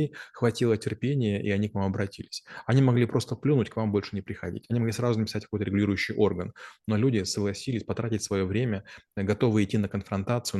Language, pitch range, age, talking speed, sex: Russian, 100-110 Hz, 20-39, 185 wpm, male